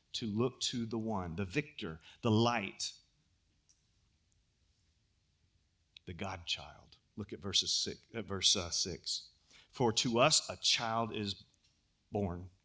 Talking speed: 125 wpm